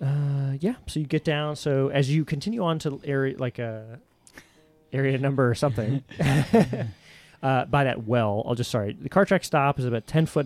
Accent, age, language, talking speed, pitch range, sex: American, 30-49, English, 200 wpm, 110-140 Hz, male